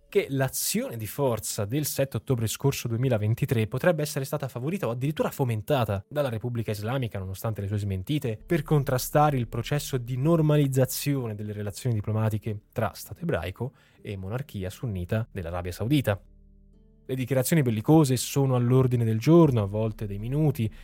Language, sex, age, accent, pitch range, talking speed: Italian, male, 10-29, native, 105-135 Hz, 145 wpm